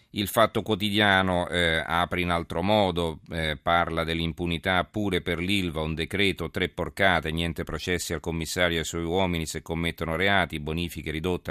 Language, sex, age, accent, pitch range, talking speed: Italian, male, 40-59, native, 80-95 Hz, 160 wpm